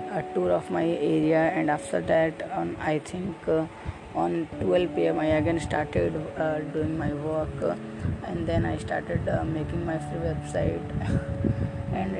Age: 20-39